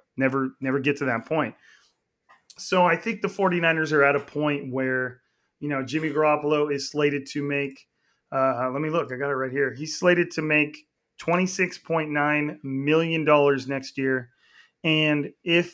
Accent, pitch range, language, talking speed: American, 140-165 Hz, English, 170 wpm